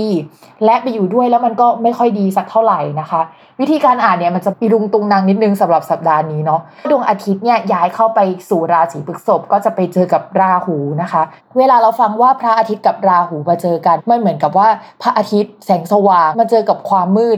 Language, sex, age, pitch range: Thai, female, 20-39, 185-235 Hz